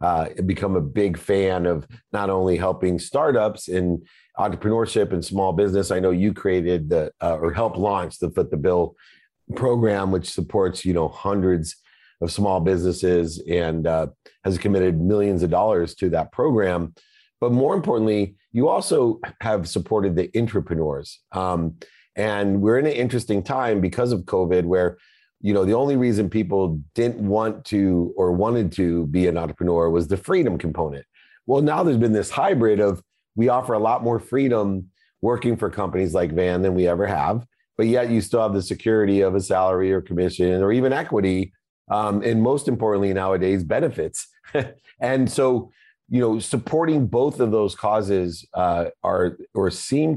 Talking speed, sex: 170 wpm, male